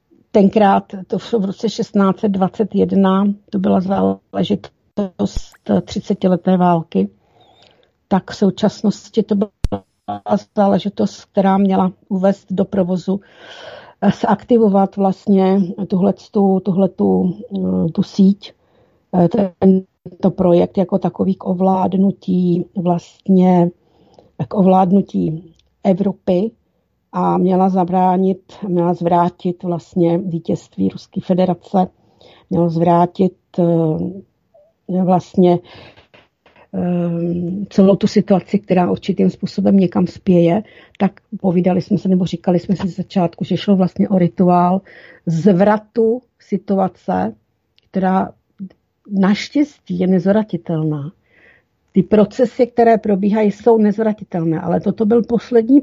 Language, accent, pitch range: Czech, native, 175-200 Hz